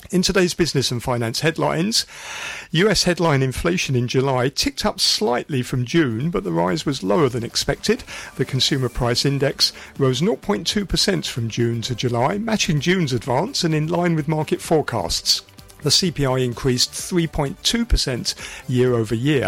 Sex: male